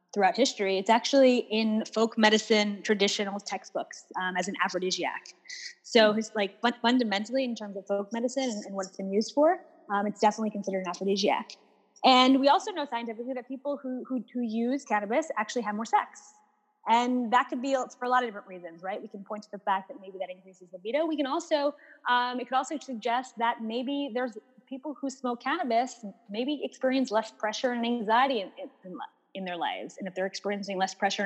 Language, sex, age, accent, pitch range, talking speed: English, female, 20-39, American, 195-260 Hz, 195 wpm